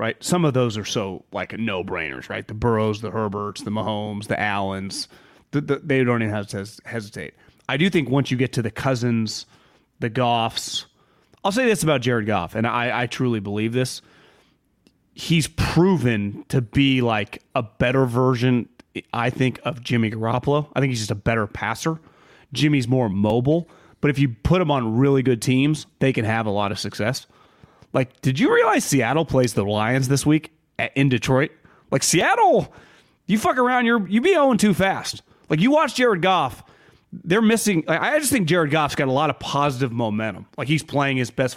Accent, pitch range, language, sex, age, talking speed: American, 115-155 Hz, English, male, 30-49, 200 wpm